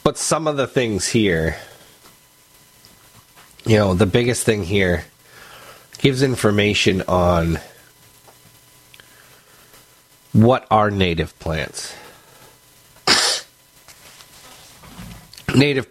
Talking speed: 75 wpm